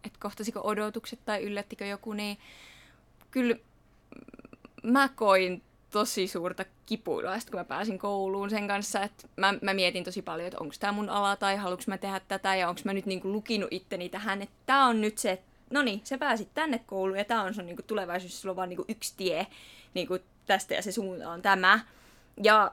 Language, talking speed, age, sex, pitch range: Finnish, 195 wpm, 20-39, female, 190-235 Hz